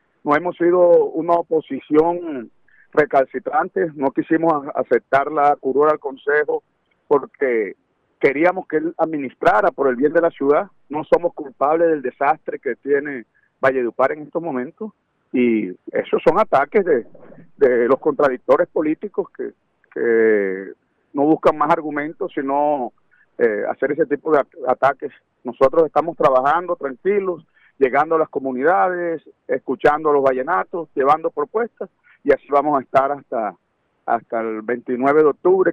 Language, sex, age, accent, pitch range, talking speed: English, male, 50-69, Venezuelan, 135-175 Hz, 140 wpm